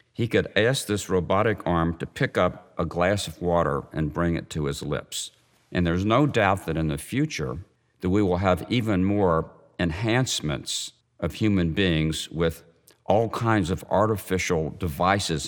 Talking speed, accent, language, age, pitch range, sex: 165 wpm, American, English, 50-69, 80-100 Hz, male